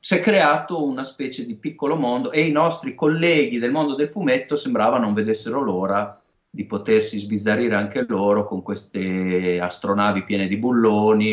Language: Italian